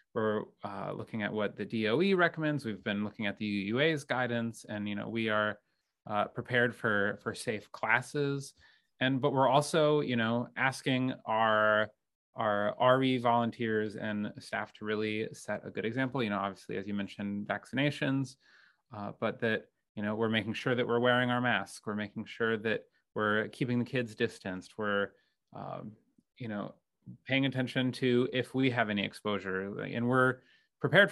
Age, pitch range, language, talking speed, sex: 30-49, 110-135 Hz, English, 170 wpm, male